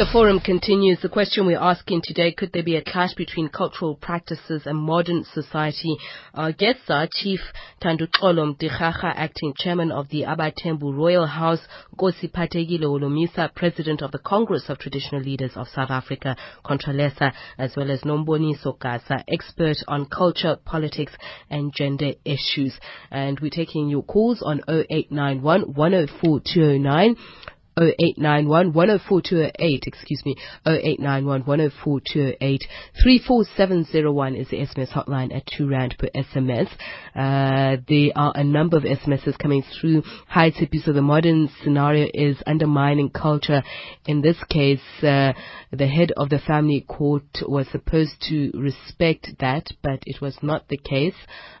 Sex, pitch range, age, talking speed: female, 140-165 Hz, 30-49, 150 wpm